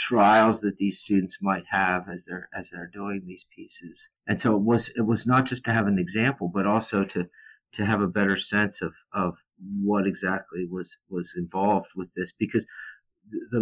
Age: 50-69